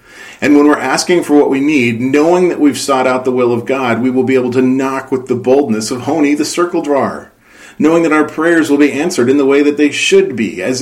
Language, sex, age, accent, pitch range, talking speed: English, male, 40-59, American, 125-145 Hz, 255 wpm